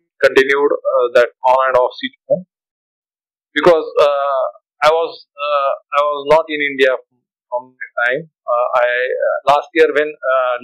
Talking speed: 150 wpm